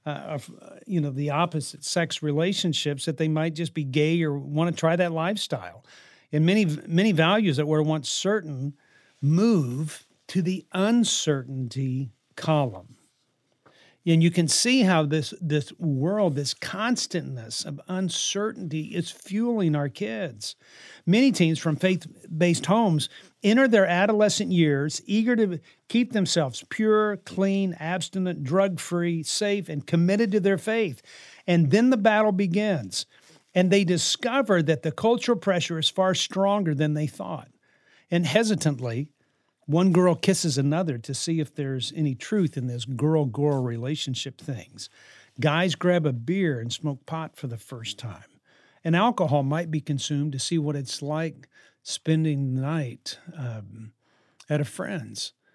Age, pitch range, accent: 50-69, 145-190 Hz, American